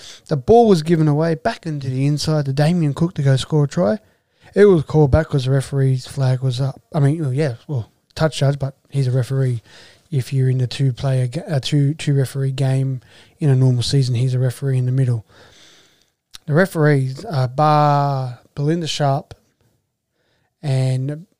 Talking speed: 175 wpm